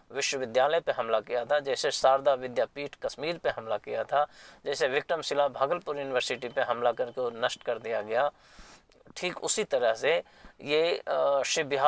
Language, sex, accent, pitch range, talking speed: Hindi, male, native, 140-185 Hz, 150 wpm